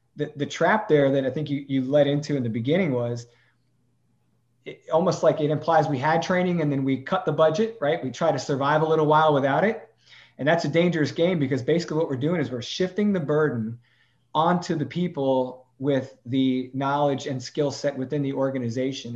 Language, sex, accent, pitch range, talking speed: English, male, American, 130-155 Hz, 205 wpm